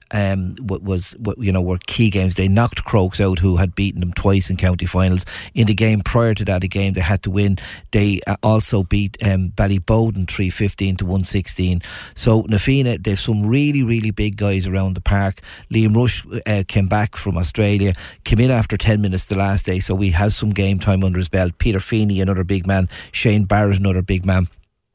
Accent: Irish